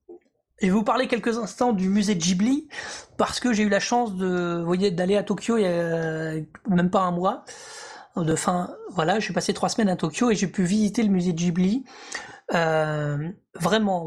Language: French